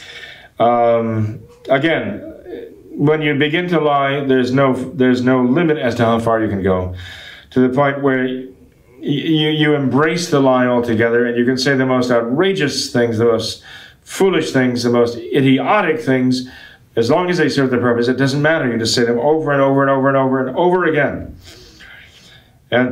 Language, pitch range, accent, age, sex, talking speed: English, 115-140 Hz, American, 40-59, male, 185 wpm